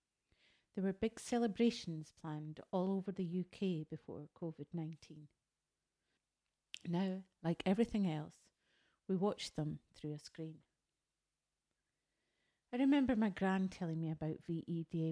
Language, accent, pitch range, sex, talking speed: English, British, 165-200 Hz, female, 115 wpm